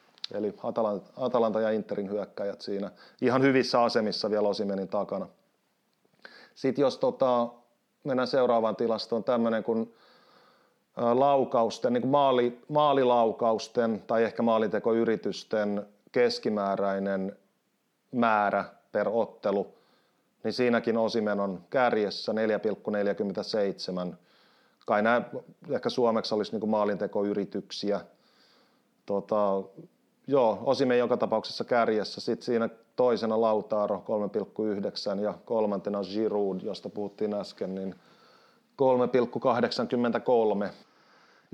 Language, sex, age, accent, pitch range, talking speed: Finnish, male, 30-49, native, 105-125 Hz, 95 wpm